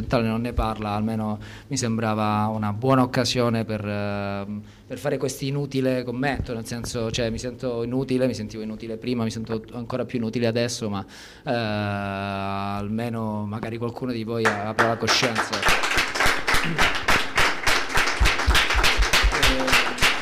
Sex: male